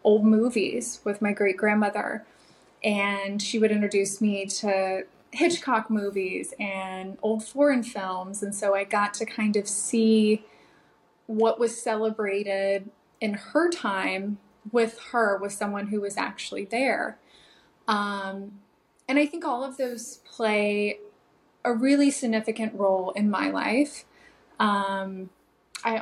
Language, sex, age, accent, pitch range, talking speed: English, female, 20-39, American, 200-225 Hz, 130 wpm